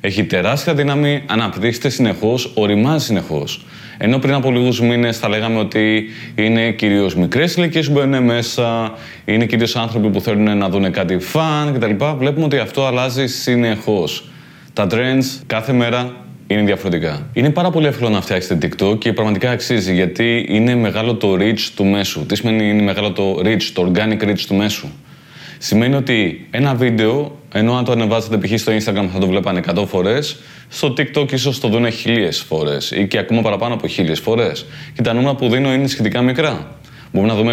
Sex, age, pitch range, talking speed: male, 20-39, 105-135 Hz, 175 wpm